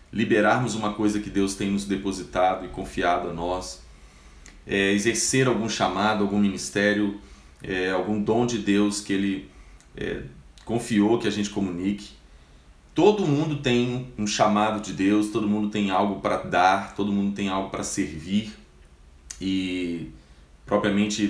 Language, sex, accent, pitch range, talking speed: Portuguese, male, Brazilian, 95-110 Hz, 145 wpm